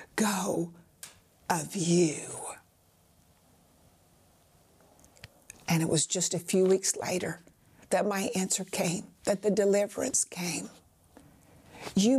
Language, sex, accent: English, female, American